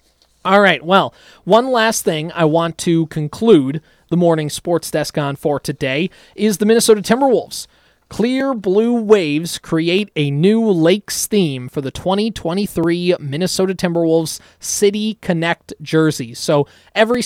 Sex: male